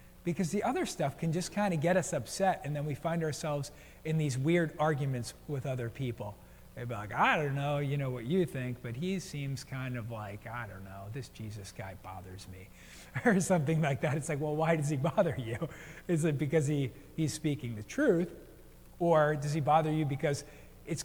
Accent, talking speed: American, 210 wpm